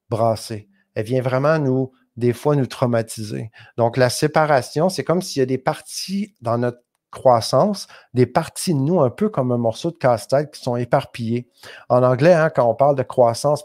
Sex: male